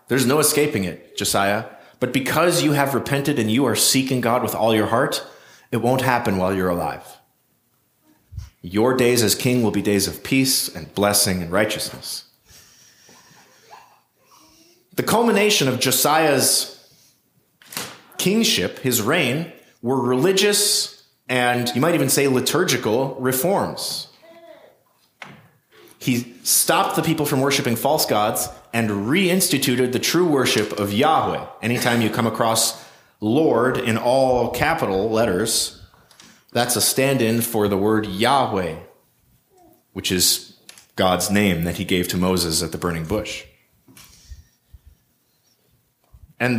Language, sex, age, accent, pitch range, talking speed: English, male, 30-49, American, 105-135 Hz, 130 wpm